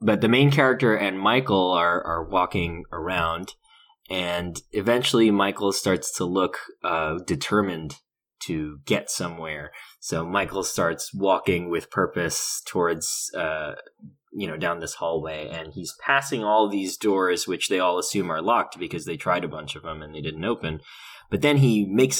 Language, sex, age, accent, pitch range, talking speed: English, male, 20-39, American, 85-110 Hz, 165 wpm